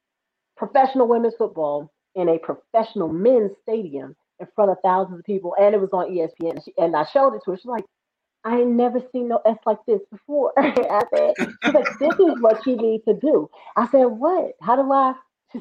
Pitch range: 175-230 Hz